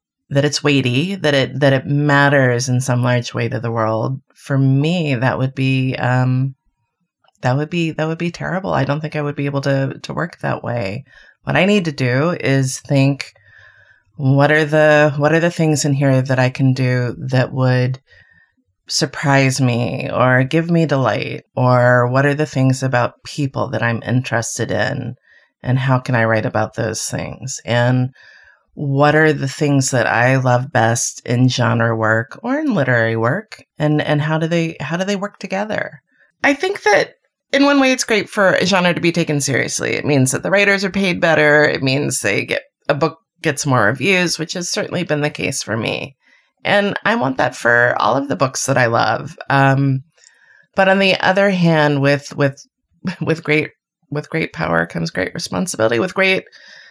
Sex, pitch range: female, 125-160 Hz